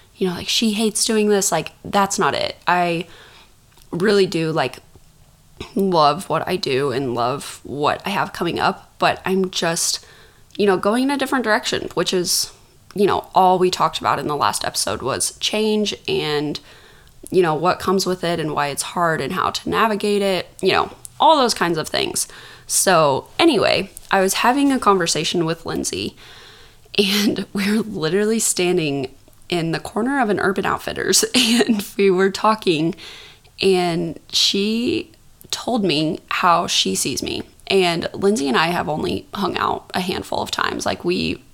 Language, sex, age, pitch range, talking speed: English, female, 20-39, 170-210 Hz, 170 wpm